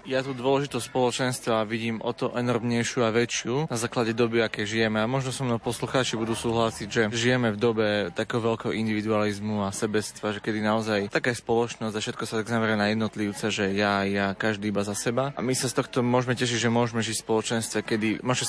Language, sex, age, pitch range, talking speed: Slovak, male, 20-39, 110-120 Hz, 205 wpm